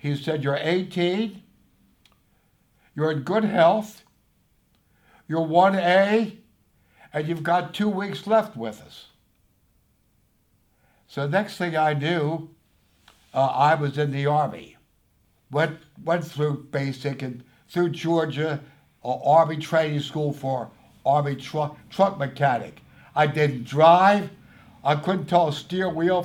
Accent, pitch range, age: American, 120-165 Hz, 60-79